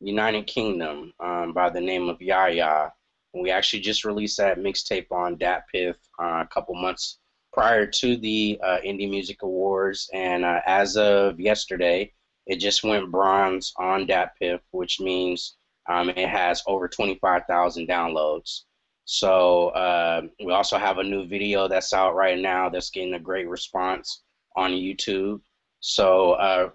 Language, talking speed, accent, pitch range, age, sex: English, 150 wpm, American, 90-100 Hz, 20-39, male